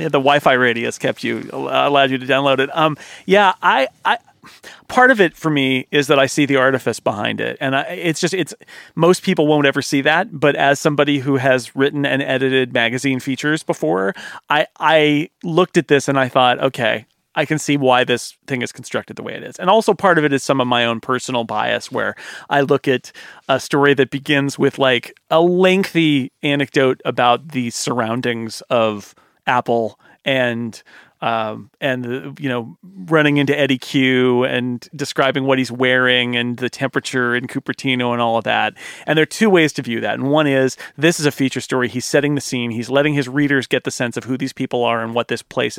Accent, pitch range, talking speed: American, 125-150 Hz, 210 wpm